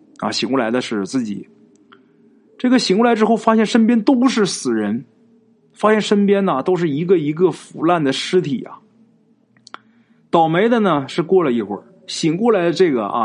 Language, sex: Chinese, male